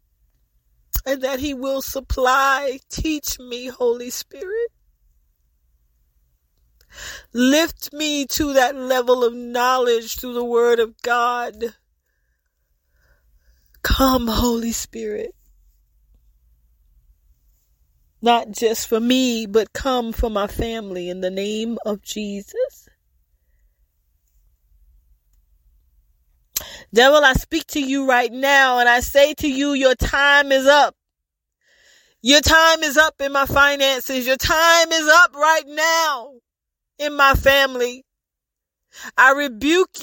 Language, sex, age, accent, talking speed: English, female, 40-59, American, 110 wpm